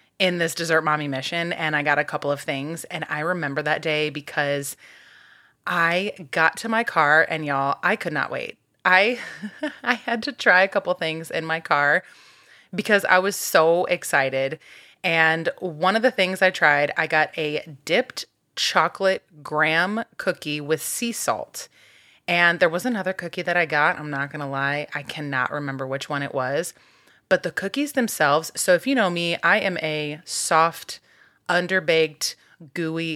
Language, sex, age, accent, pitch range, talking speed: English, female, 30-49, American, 150-190 Hz, 175 wpm